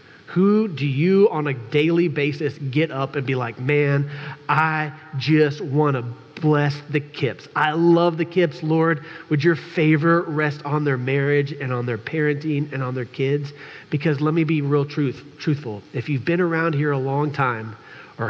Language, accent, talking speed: English, American, 185 wpm